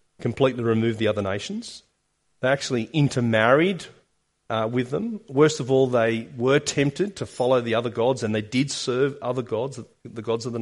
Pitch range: 120-160 Hz